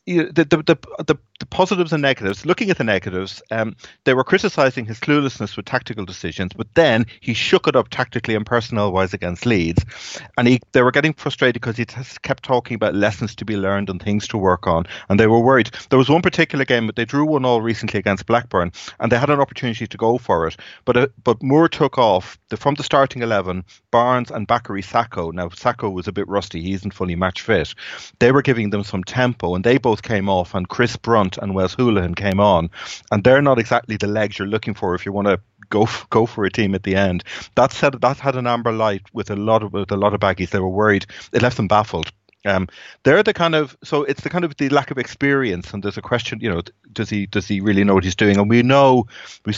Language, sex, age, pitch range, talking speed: English, male, 30-49, 100-125 Hz, 250 wpm